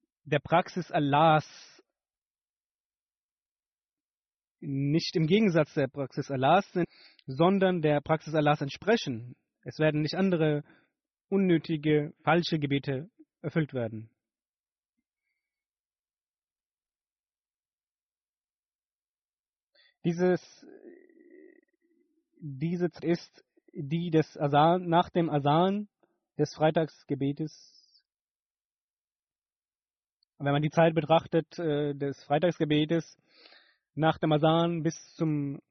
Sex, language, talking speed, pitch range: male, German, 80 wpm, 145-180 Hz